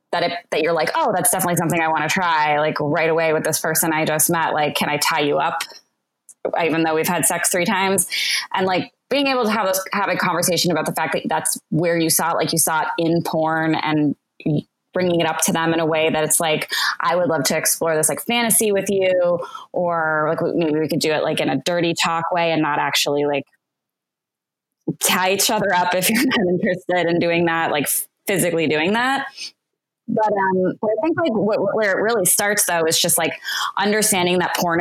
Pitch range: 160-205 Hz